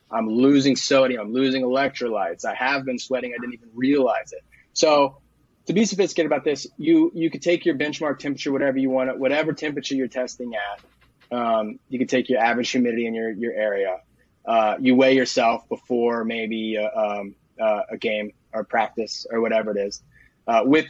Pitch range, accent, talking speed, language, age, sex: 120-150 Hz, American, 190 wpm, English, 20-39, male